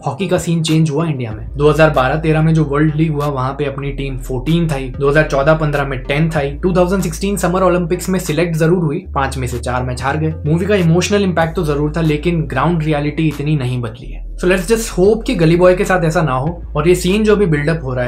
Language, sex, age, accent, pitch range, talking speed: Hindi, male, 20-39, native, 130-160 Hz, 230 wpm